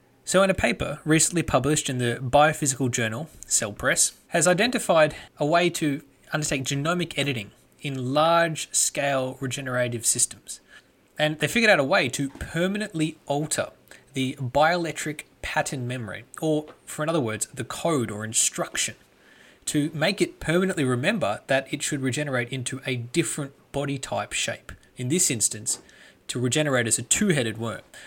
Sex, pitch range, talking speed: male, 120-155 Hz, 150 wpm